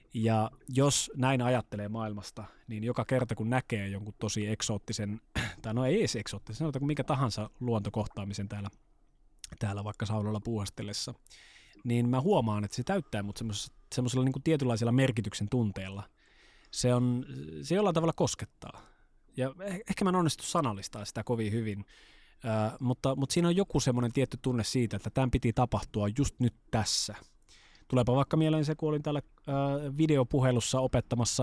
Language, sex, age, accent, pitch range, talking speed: Finnish, male, 20-39, native, 105-130 Hz, 155 wpm